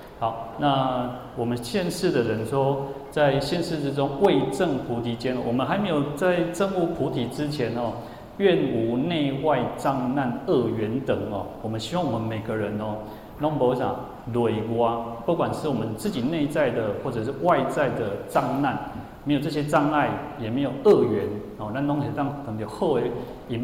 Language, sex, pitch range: Chinese, male, 115-145 Hz